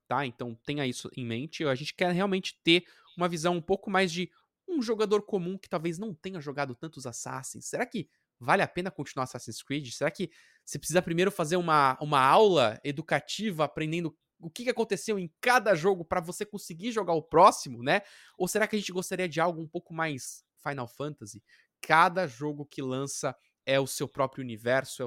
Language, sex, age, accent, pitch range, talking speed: Portuguese, male, 20-39, Brazilian, 130-185 Hz, 195 wpm